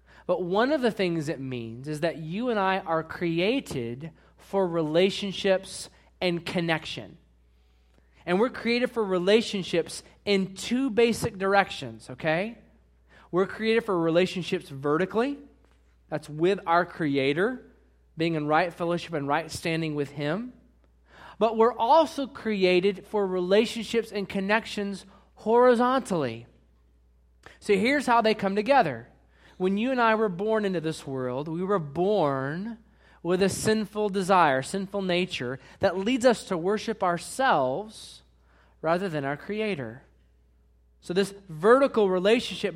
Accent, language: American, English